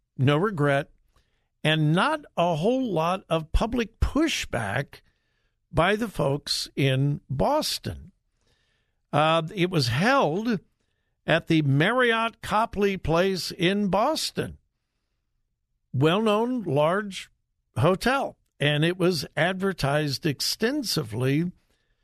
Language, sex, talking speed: English, male, 95 wpm